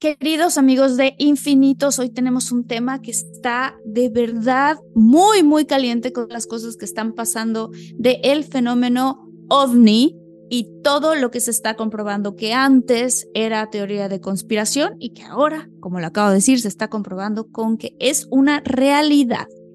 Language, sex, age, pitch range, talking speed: Spanish, female, 20-39, 215-280 Hz, 160 wpm